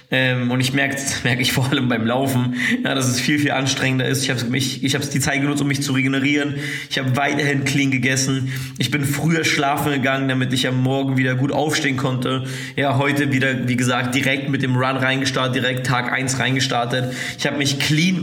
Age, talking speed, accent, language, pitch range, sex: 20-39, 215 wpm, German, English, 130-145 Hz, male